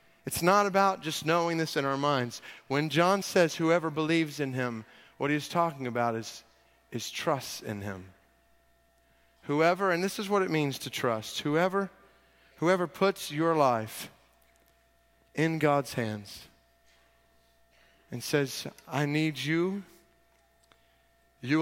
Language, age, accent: English, 40-59, American